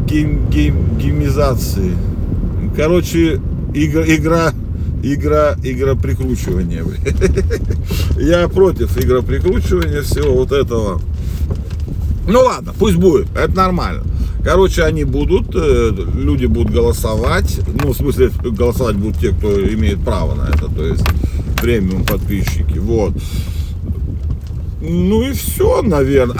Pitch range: 80-105 Hz